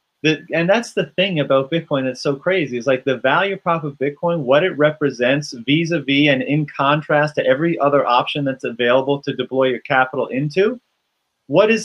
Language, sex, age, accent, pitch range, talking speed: English, male, 30-49, American, 130-165 Hz, 185 wpm